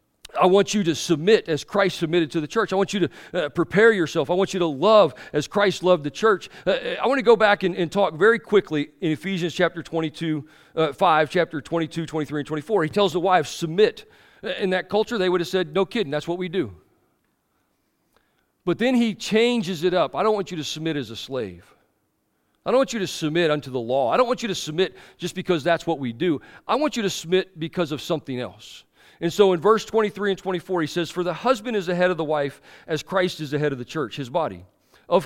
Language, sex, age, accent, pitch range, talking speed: English, male, 40-59, American, 150-195 Hz, 240 wpm